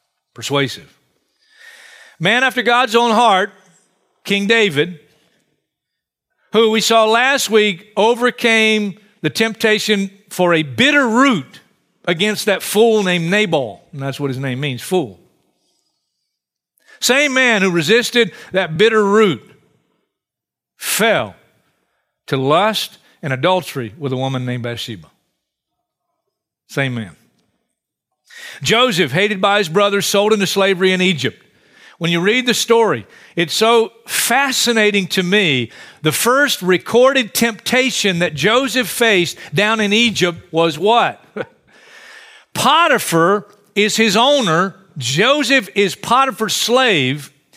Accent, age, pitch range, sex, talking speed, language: American, 50-69, 175-235 Hz, male, 115 wpm, English